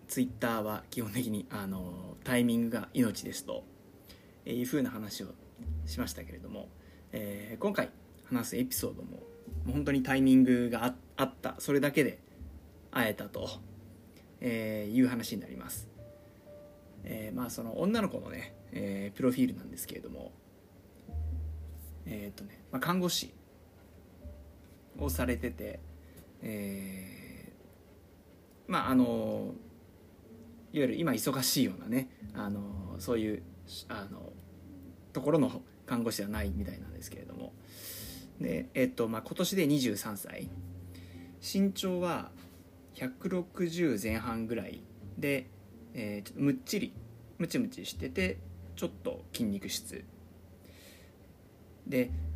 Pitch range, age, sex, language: 90-120 Hz, 20-39, male, Japanese